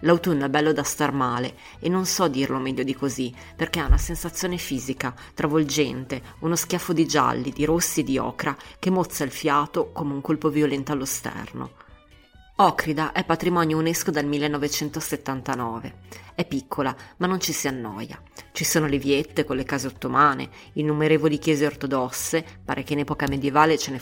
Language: Italian